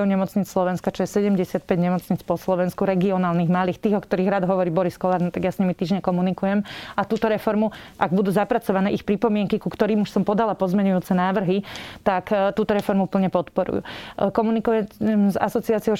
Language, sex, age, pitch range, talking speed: Slovak, female, 30-49, 190-215 Hz, 175 wpm